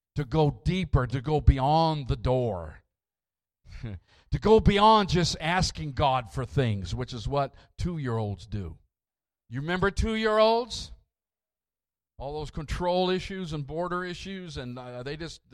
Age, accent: 50-69, American